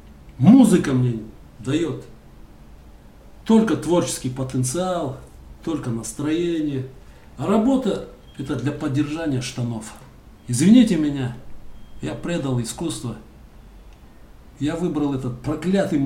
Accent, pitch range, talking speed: native, 125-170 Hz, 85 wpm